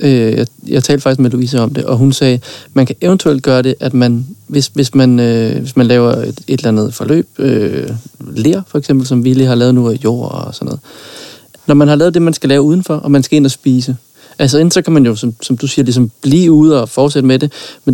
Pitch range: 130-155 Hz